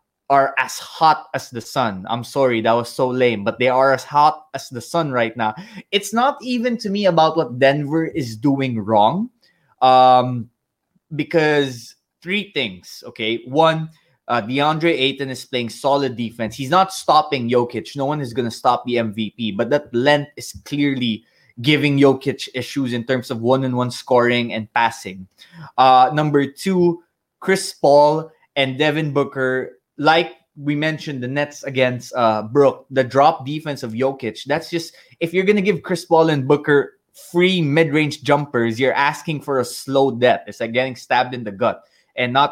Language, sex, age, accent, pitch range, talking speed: English, male, 20-39, Filipino, 120-155 Hz, 175 wpm